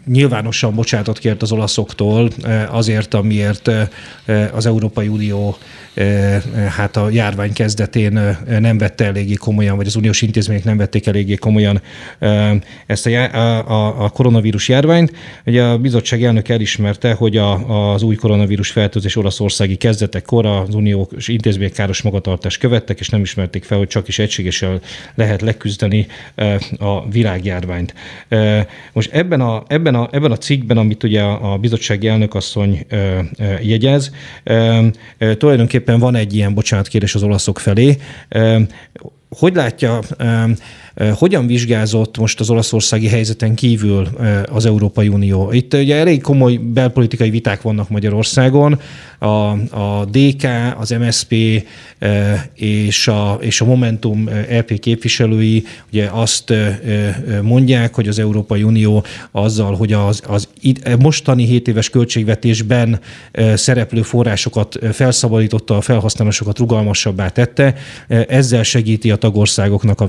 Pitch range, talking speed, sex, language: 105-120 Hz, 120 wpm, male, Hungarian